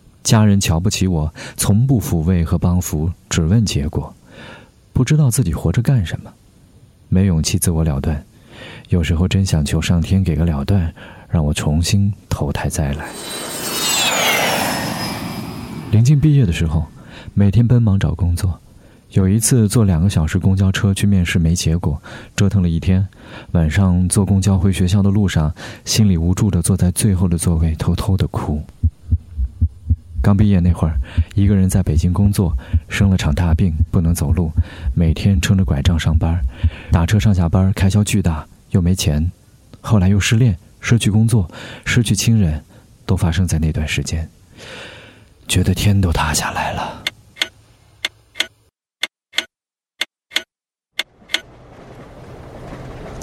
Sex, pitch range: male, 85-105 Hz